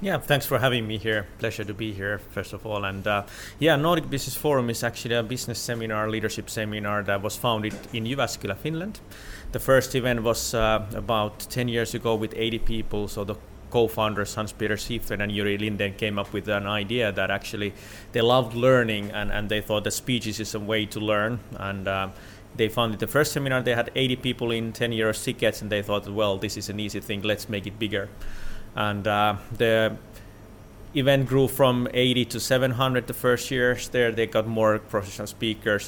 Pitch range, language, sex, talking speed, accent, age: 105-120 Hz, English, male, 195 wpm, Finnish, 30-49